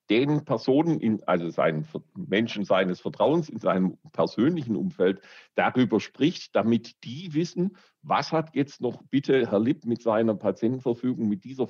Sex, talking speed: male, 150 wpm